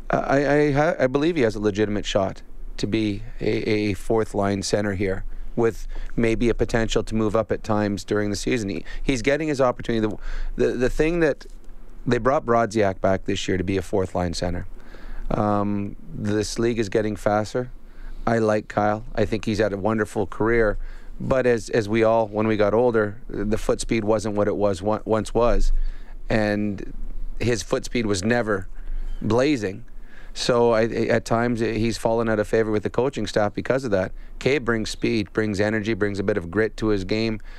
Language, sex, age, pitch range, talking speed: English, male, 30-49, 105-115 Hz, 190 wpm